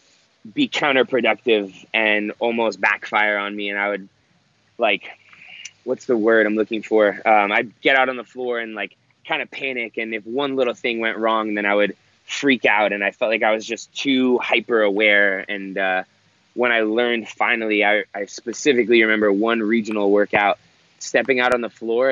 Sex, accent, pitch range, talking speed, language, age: male, American, 105-120 Hz, 185 wpm, English, 20-39